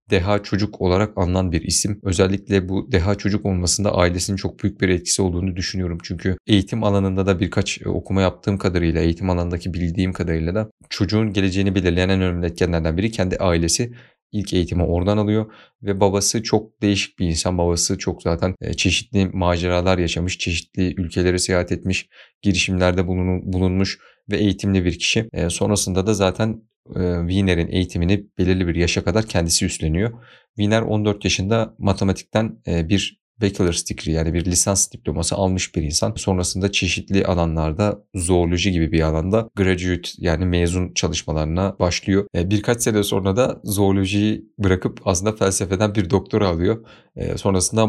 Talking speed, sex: 145 wpm, male